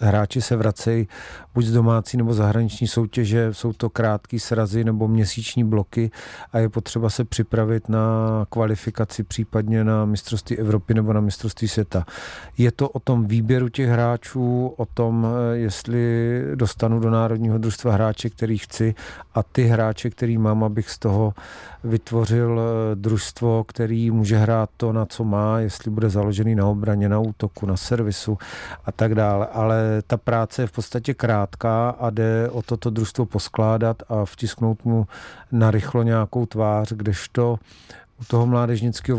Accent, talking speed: native, 155 wpm